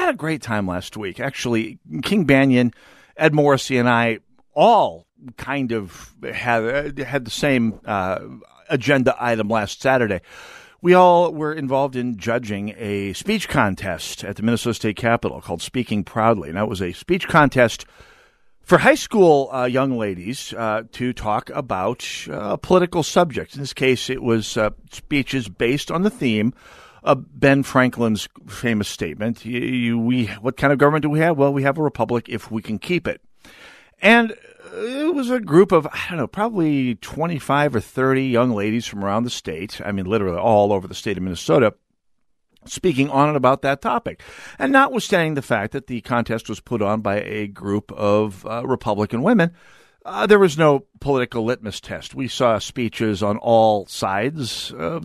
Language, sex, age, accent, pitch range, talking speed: English, male, 50-69, American, 110-150 Hz, 175 wpm